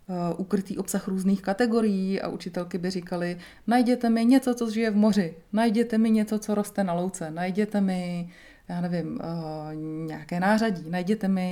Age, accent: 30-49, native